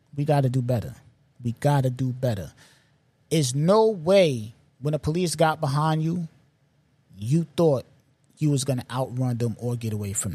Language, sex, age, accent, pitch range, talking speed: English, male, 20-39, American, 130-160 Hz, 180 wpm